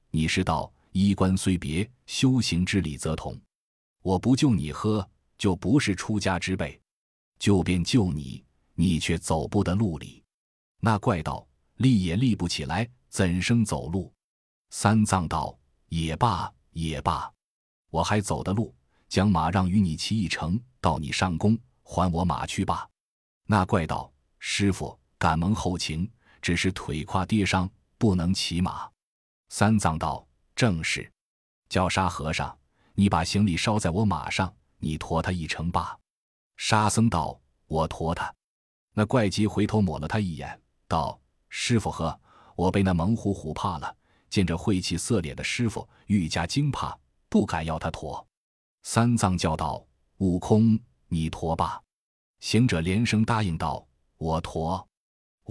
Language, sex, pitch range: Chinese, male, 80-105 Hz